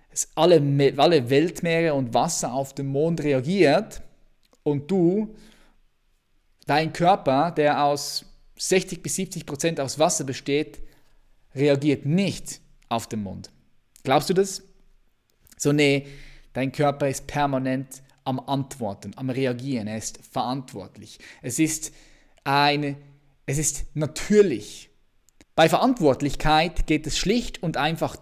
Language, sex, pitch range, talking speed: German, male, 135-175 Hz, 120 wpm